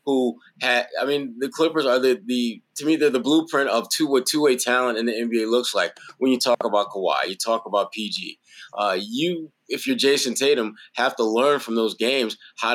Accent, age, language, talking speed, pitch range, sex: American, 20-39, English, 210 wpm, 125-155 Hz, male